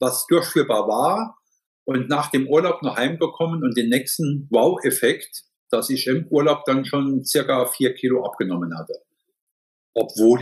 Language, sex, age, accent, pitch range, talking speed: German, male, 50-69, German, 130-195 Hz, 145 wpm